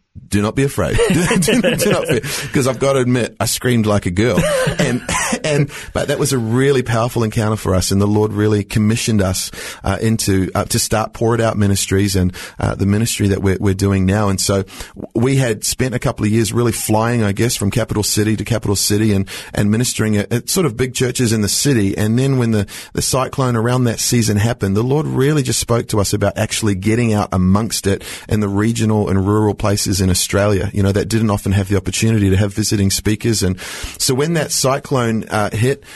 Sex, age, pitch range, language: male, 40-59, 100-120 Hz, English